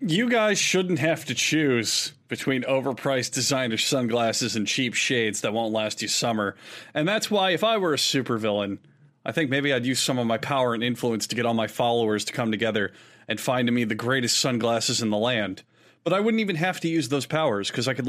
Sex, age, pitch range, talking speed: male, 30-49, 120-170 Hz, 220 wpm